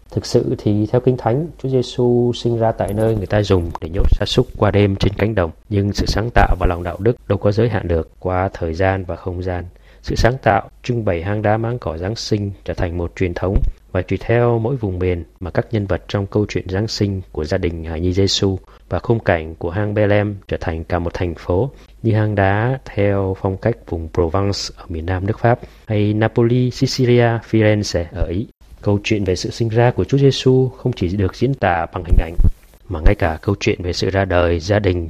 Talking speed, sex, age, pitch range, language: 240 wpm, male, 20-39, 90-115 Hz, Vietnamese